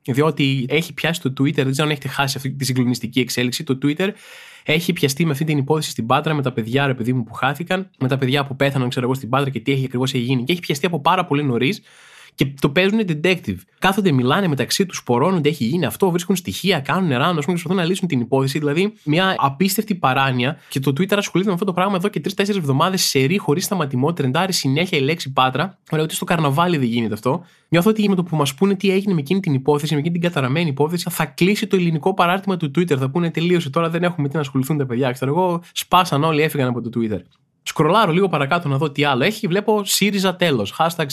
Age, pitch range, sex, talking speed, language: 20-39, 135-185 Hz, male, 240 wpm, Greek